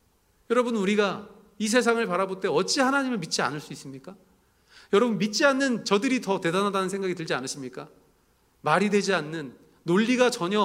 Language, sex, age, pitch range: Korean, male, 40-59, 170-235 Hz